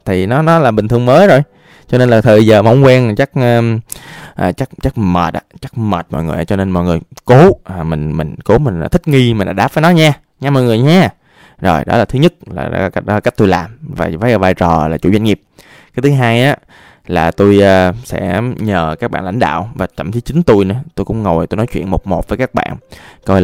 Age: 20-39